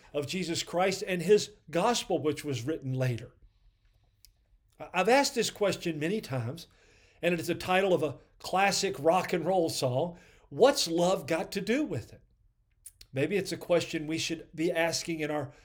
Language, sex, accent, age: English, male, American, 50-69